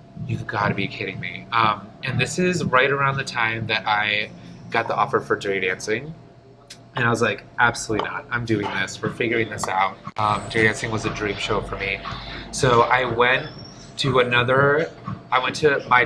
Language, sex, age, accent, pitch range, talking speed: English, male, 20-39, American, 115-150 Hz, 200 wpm